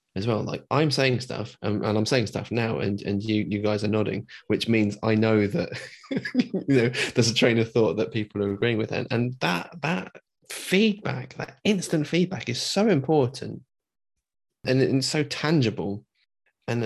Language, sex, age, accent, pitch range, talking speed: English, male, 20-39, British, 105-130 Hz, 190 wpm